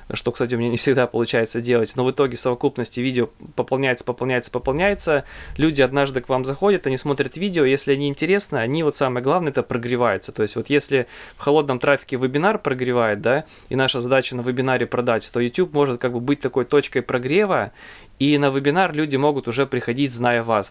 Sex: male